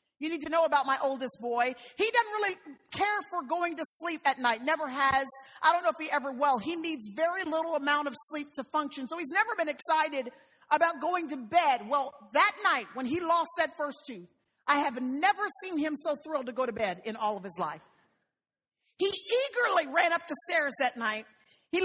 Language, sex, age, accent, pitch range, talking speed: English, female, 40-59, American, 275-365 Hz, 215 wpm